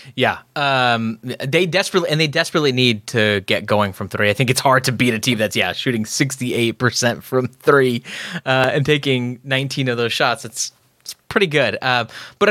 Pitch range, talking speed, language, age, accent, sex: 110-150 Hz, 200 wpm, English, 20-39, American, male